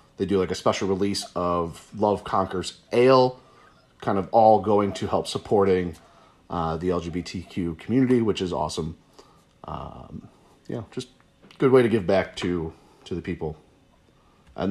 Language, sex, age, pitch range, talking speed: English, male, 30-49, 95-130 Hz, 155 wpm